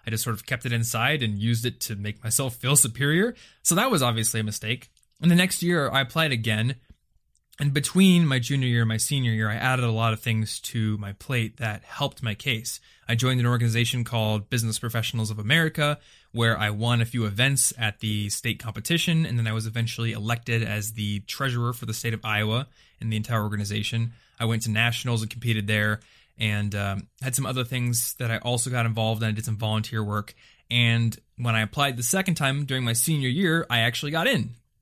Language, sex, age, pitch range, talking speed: English, male, 20-39, 110-135 Hz, 215 wpm